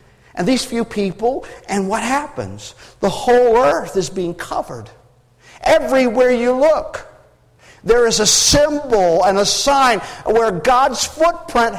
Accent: American